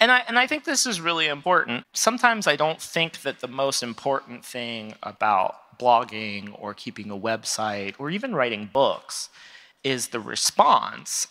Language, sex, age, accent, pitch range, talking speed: English, male, 30-49, American, 115-165 Hz, 165 wpm